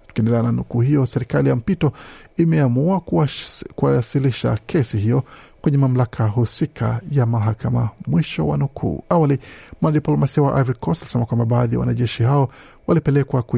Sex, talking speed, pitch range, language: male, 135 wpm, 115-140 Hz, Swahili